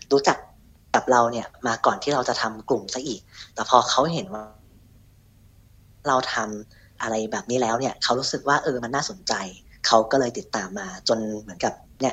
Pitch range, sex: 110-145 Hz, female